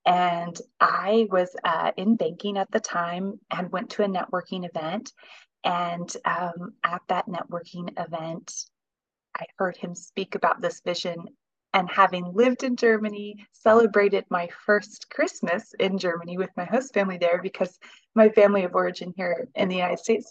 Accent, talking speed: American, 160 wpm